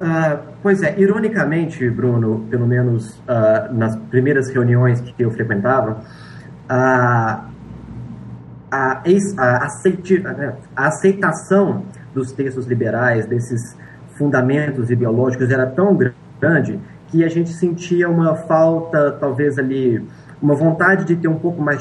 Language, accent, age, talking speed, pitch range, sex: Portuguese, Brazilian, 30-49, 125 wpm, 125-160 Hz, male